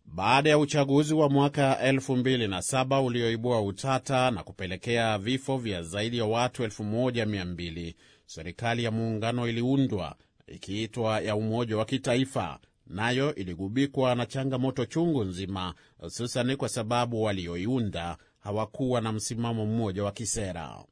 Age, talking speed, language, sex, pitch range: 30-49, 130 wpm, Swahili, male, 115-140 Hz